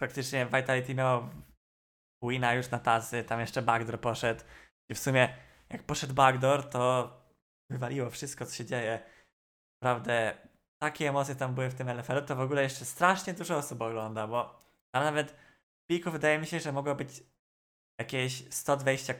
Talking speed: 165 wpm